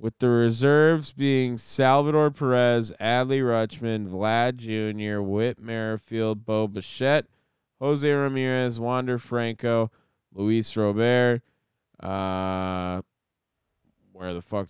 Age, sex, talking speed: 20-39, male, 100 wpm